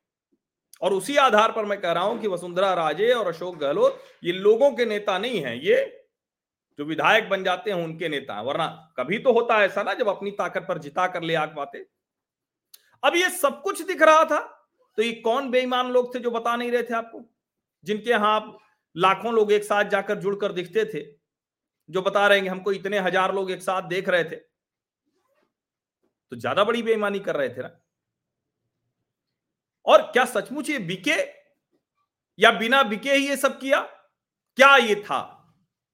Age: 40-59